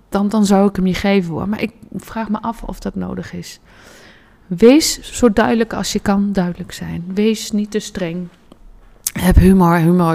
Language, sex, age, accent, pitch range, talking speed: Dutch, female, 30-49, Dutch, 170-225 Hz, 190 wpm